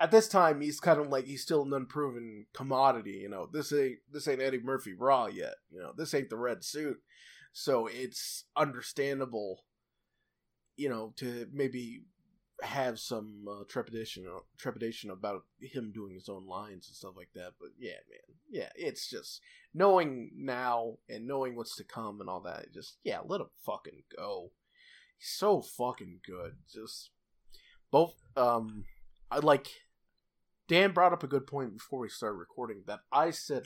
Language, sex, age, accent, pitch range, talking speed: English, male, 20-39, American, 125-175 Hz, 170 wpm